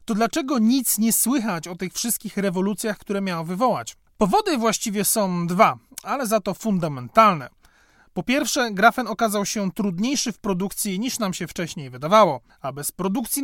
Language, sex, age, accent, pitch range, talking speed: Polish, male, 30-49, native, 180-245 Hz, 160 wpm